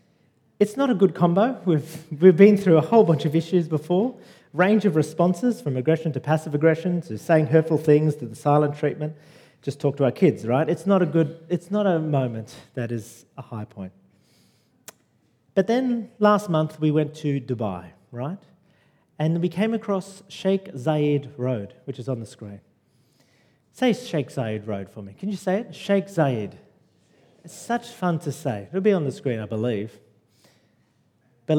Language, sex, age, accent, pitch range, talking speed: English, male, 40-59, Australian, 130-185 Hz, 180 wpm